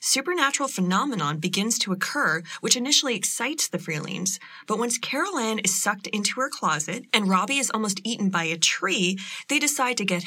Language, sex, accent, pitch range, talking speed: English, female, American, 180-235 Hz, 180 wpm